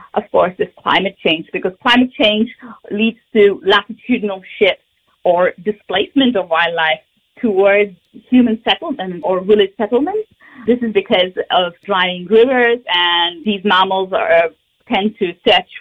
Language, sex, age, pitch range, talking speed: English, female, 30-49, 185-245 Hz, 135 wpm